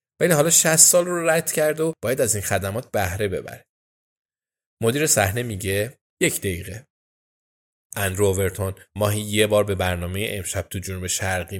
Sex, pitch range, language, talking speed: male, 95-130 Hz, Persian, 155 wpm